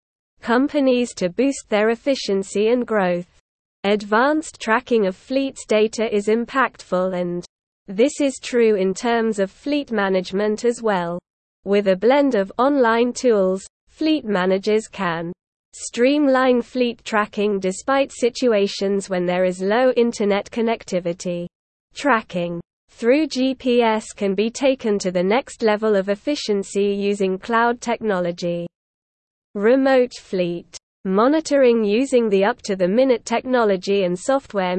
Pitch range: 195-250 Hz